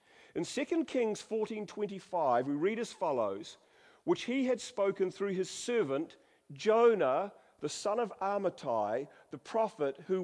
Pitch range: 130-185 Hz